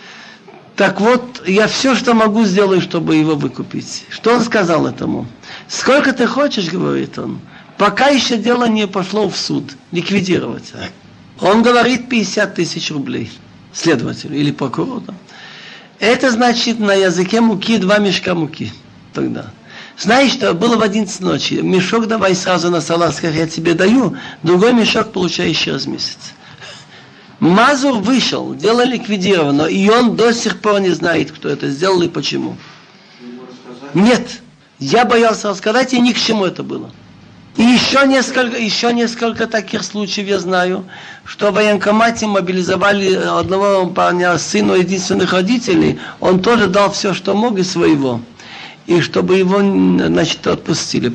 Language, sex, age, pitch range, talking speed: Russian, male, 60-79, 180-230 Hz, 140 wpm